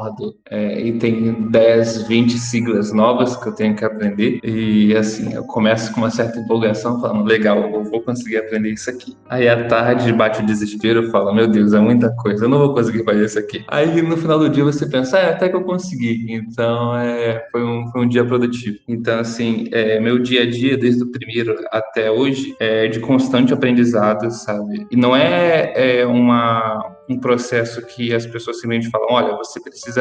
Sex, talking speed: male, 200 wpm